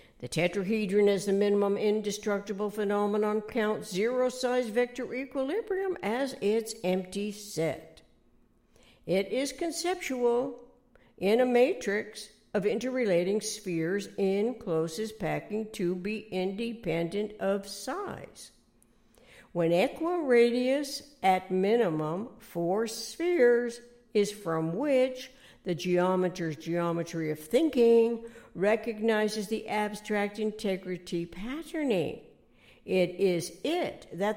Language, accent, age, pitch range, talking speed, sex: English, American, 60-79, 175-235 Hz, 100 wpm, female